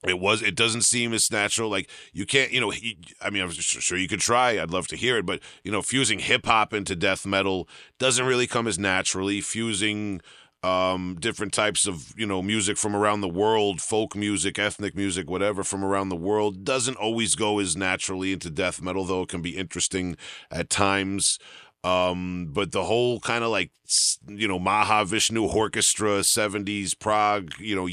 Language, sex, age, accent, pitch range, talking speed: English, male, 40-59, American, 90-105 Hz, 190 wpm